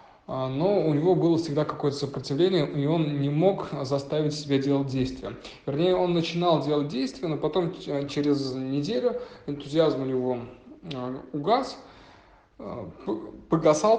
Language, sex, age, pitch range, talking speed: Russian, male, 20-39, 135-170 Hz, 125 wpm